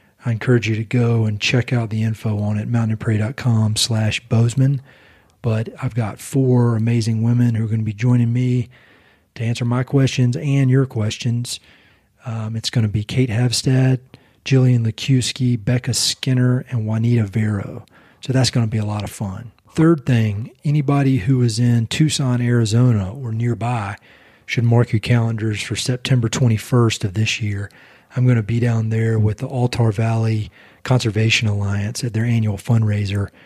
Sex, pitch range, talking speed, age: male, 110-125 Hz, 170 wpm, 40-59